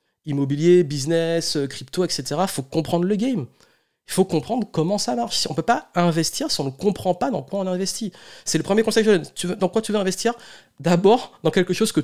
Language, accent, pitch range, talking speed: French, French, 140-180 Hz, 220 wpm